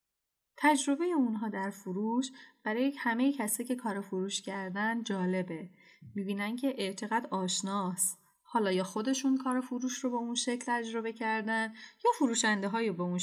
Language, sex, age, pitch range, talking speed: Persian, female, 10-29, 185-235 Hz, 145 wpm